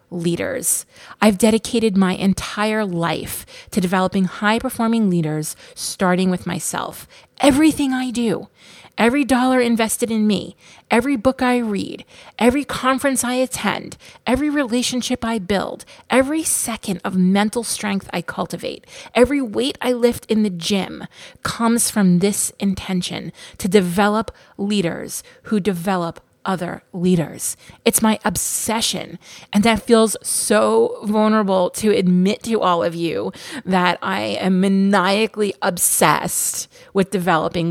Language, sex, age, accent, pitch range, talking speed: English, female, 30-49, American, 185-230 Hz, 125 wpm